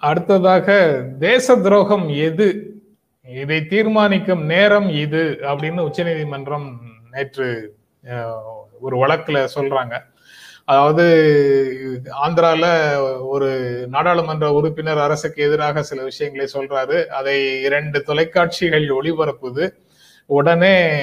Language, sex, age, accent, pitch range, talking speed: Tamil, male, 30-49, native, 140-180 Hz, 85 wpm